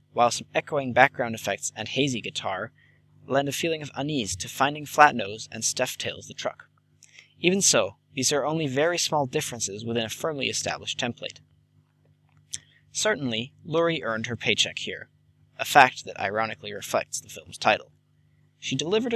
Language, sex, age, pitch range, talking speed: English, male, 20-39, 115-150 Hz, 155 wpm